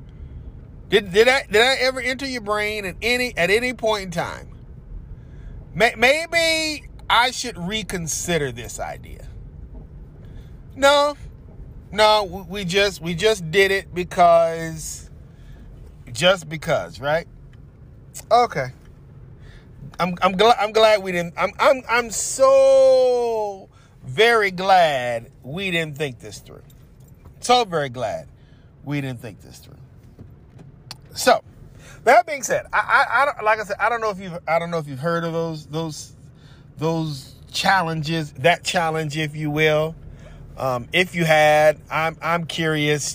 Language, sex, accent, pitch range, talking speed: English, male, American, 140-200 Hz, 140 wpm